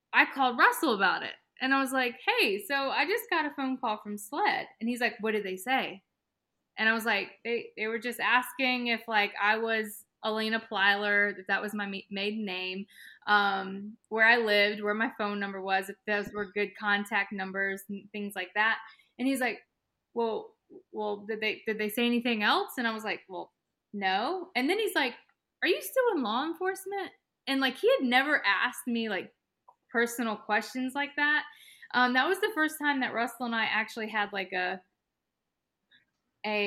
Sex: female